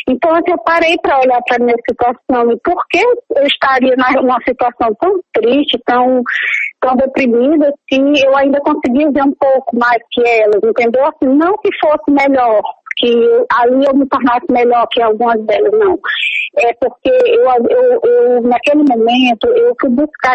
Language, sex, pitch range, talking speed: Portuguese, female, 250-320 Hz, 170 wpm